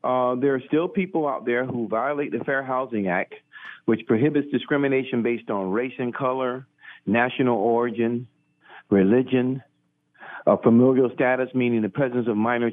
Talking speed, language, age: 145 wpm, English, 50-69